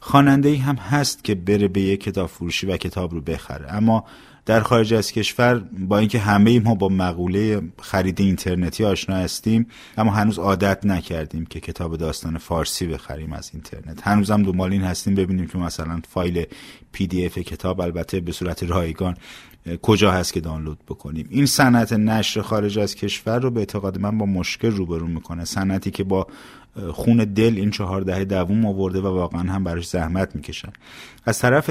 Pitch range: 90-110 Hz